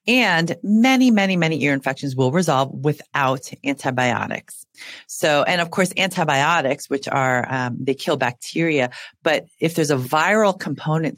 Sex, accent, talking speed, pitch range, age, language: female, American, 145 wpm, 130-165 Hz, 40-59, English